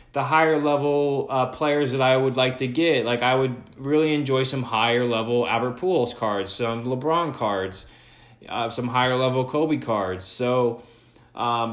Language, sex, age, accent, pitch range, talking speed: English, male, 20-39, American, 120-160 Hz, 165 wpm